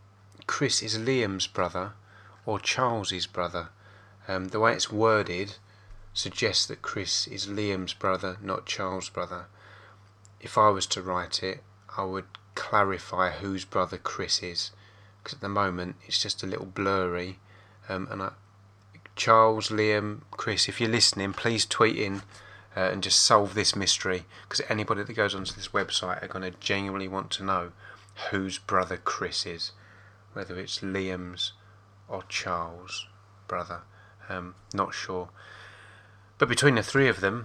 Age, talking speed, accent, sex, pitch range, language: 20-39, 150 wpm, British, male, 95-105 Hz, English